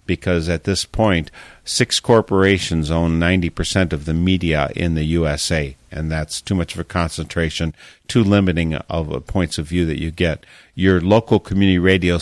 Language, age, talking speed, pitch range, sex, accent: English, 50-69, 165 wpm, 80-105 Hz, male, American